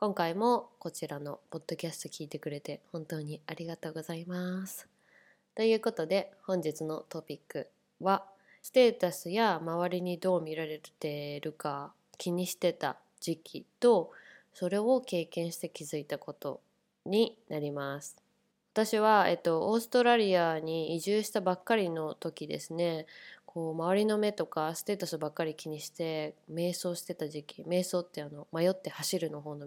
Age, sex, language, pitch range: 20-39, female, Japanese, 155-195 Hz